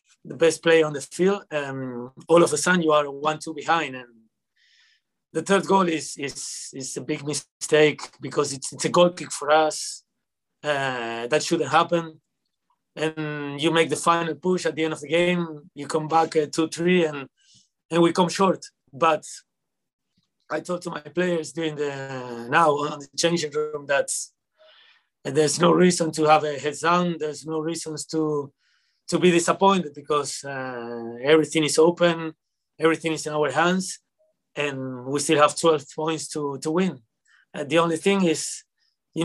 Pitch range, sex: 145-170 Hz, male